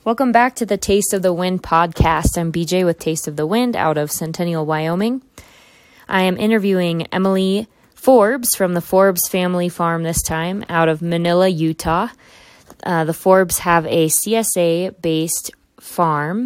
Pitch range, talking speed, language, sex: 165-195 Hz, 155 wpm, English, female